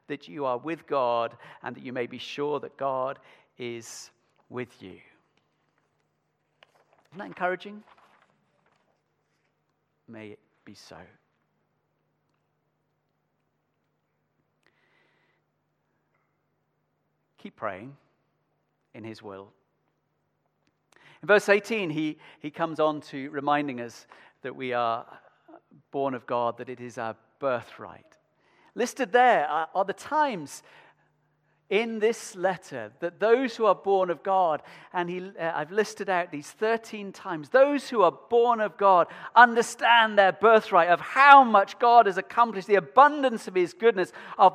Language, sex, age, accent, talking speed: English, male, 50-69, British, 125 wpm